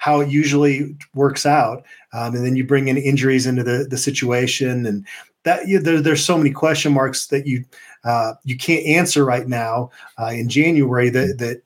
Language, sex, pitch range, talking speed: English, male, 125-145 Hz, 200 wpm